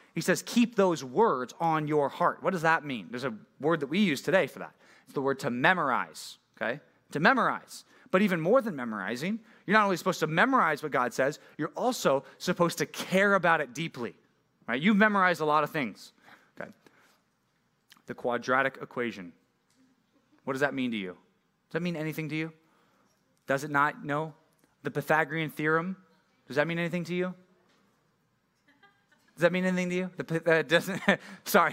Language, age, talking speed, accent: English, 30-49, 185 wpm, American